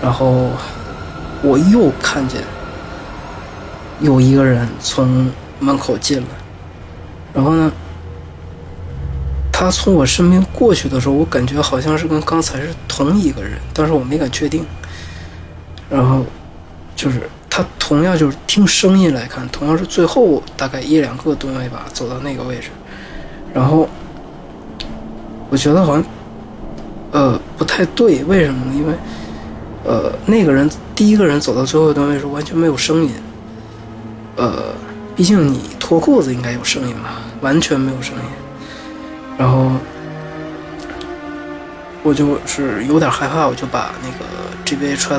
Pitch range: 110-155 Hz